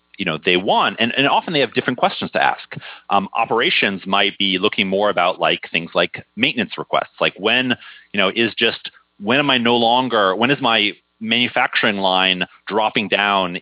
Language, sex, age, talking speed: English, male, 30-49, 190 wpm